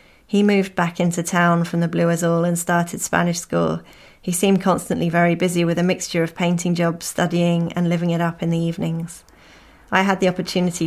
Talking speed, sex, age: 200 wpm, female, 20-39